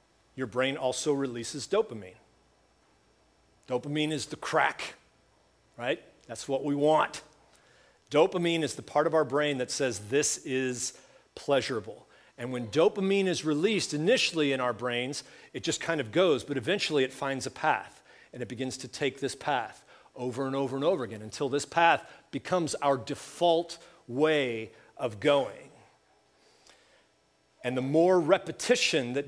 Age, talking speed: 40-59, 150 wpm